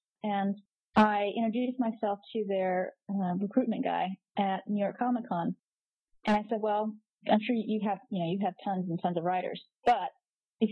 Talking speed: 180 wpm